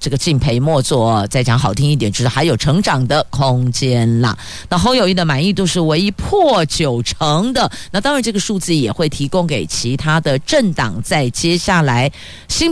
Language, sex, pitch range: Chinese, female, 135-190 Hz